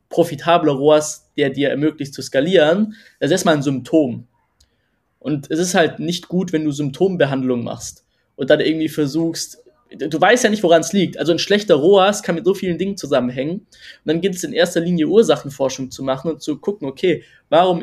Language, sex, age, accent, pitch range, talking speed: German, male, 20-39, German, 150-180 Hz, 195 wpm